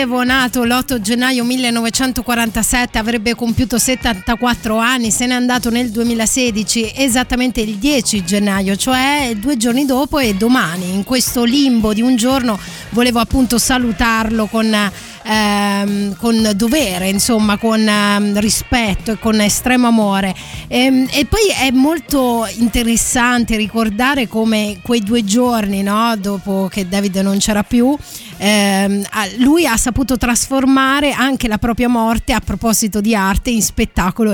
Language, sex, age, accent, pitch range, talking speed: Italian, female, 20-39, native, 210-250 Hz, 130 wpm